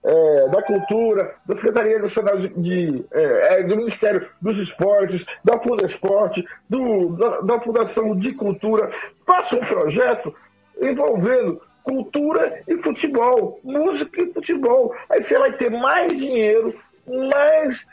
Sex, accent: male, Brazilian